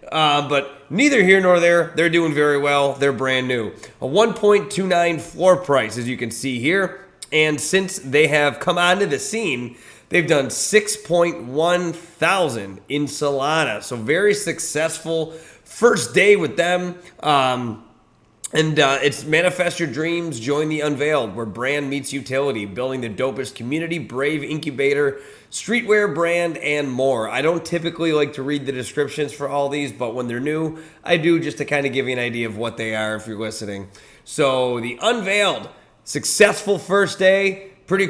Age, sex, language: 30-49, male, English